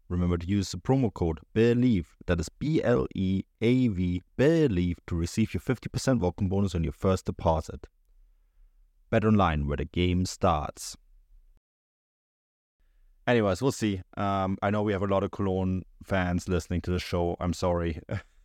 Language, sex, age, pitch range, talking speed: English, male, 30-49, 80-100 Hz, 150 wpm